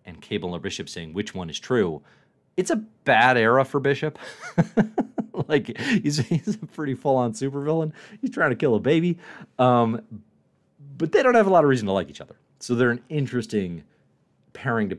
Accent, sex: American, male